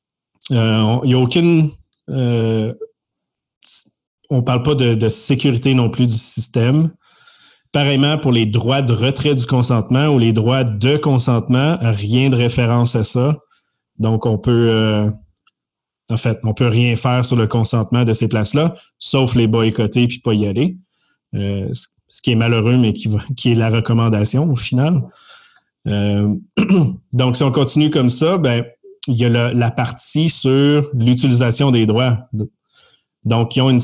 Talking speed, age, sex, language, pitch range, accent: 160 wpm, 30-49, male, French, 115-140 Hz, Canadian